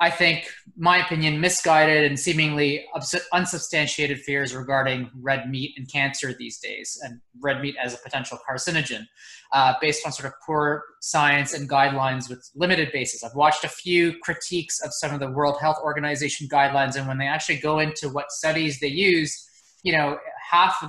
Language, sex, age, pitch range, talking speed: English, male, 20-39, 140-160 Hz, 180 wpm